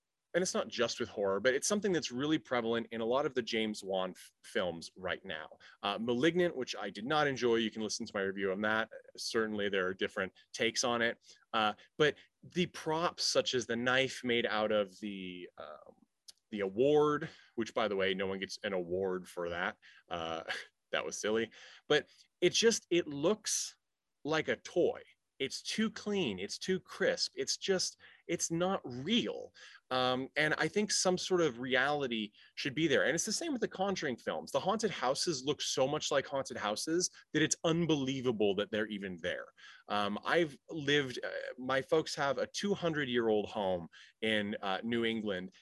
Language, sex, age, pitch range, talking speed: English, male, 30-49, 110-170 Hz, 190 wpm